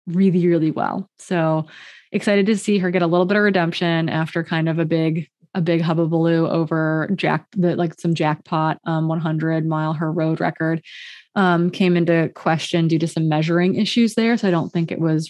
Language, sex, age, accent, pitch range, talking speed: English, female, 20-39, American, 165-195 Hz, 200 wpm